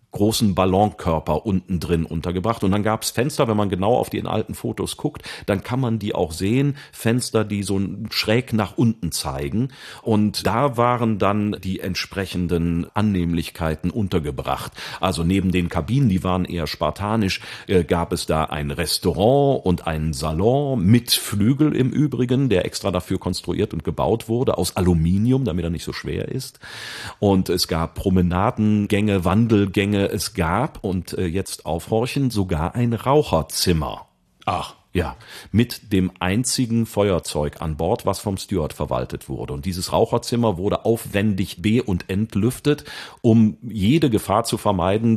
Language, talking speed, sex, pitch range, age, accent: German, 150 wpm, male, 85-115 Hz, 40-59, German